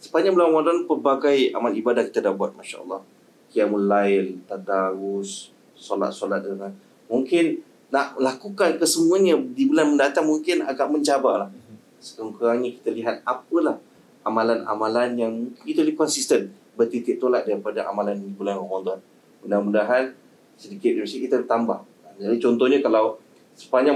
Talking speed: 125 wpm